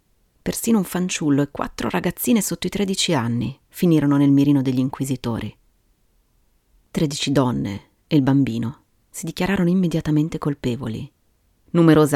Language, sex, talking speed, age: Italian, female, 125 wpm, 40-59